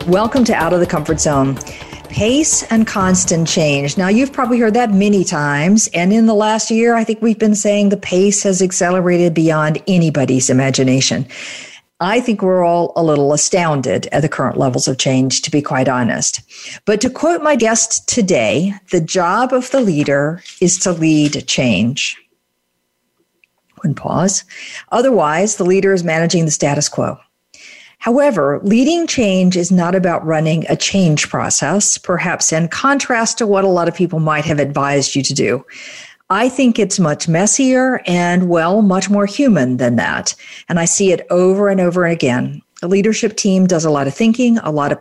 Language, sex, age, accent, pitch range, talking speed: English, female, 50-69, American, 155-215 Hz, 175 wpm